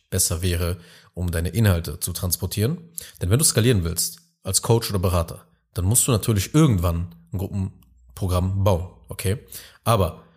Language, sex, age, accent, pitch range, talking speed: German, male, 30-49, German, 90-120 Hz, 150 wpm